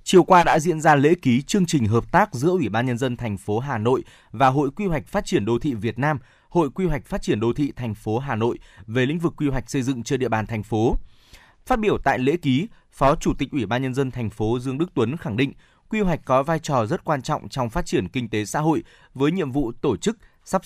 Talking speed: 270 wpm